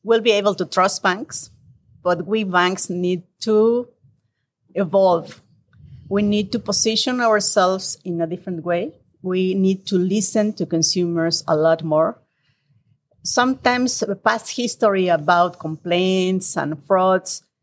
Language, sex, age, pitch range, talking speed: English, female, 40-59, 170-220 Hz, 130 wpm